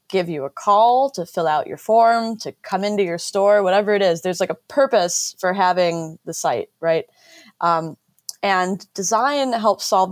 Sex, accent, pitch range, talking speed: female, American, 170-200 Hz, 185 wpm